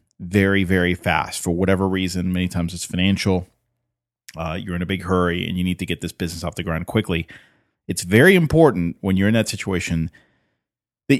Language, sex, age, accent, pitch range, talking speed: English, male, 30-49, American, 95-120 Hz, 195 wpm